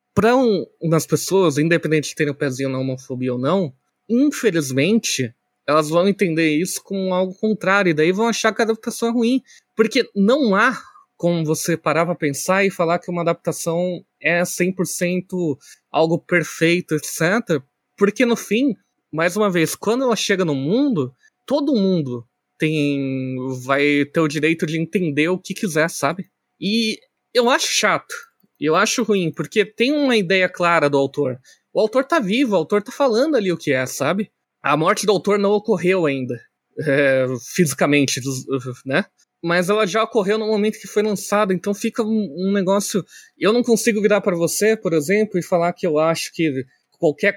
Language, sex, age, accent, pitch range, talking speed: Portuguese, male, 20-39, Brazilian, 155-210 Hz, 175 wpm